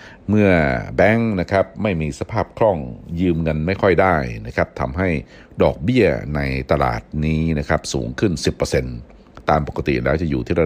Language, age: Thai, 60-79